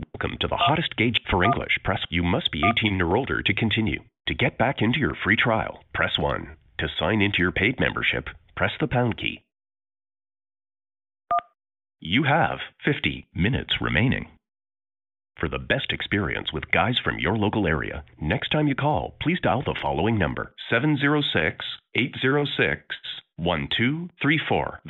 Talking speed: 145 wpm